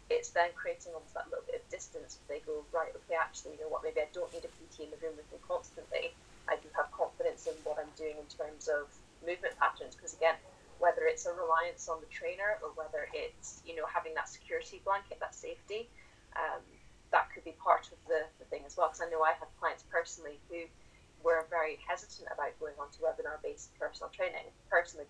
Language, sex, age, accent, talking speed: English, female, 10-29, British, 220 wpm